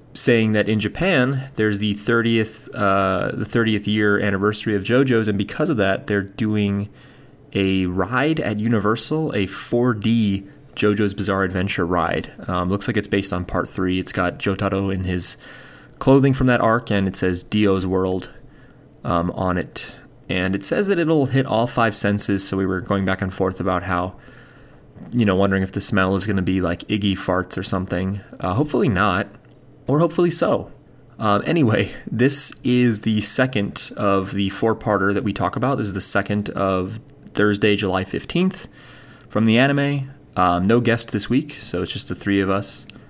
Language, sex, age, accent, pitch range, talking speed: English, male, 30-49, American, 95-120 Hz, 180 wpm